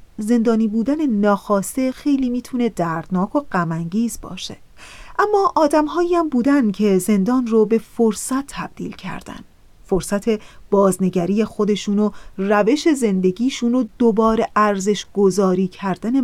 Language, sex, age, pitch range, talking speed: Persian, female, 30-49, 190-240 Hz, 115 wpm